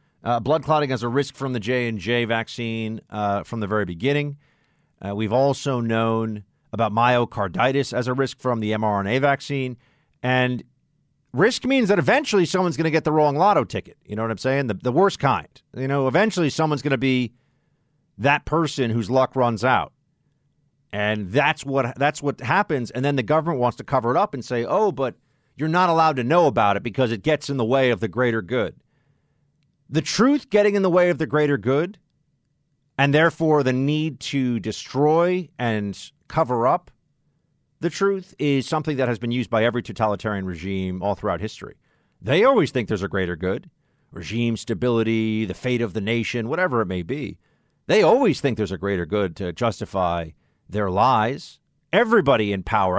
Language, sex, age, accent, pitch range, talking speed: English, male, 40-59, American, 110-150 Hz, 185 wpm